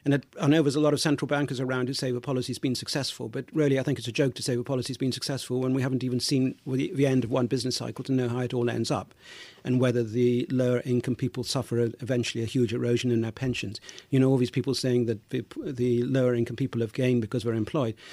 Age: 40-59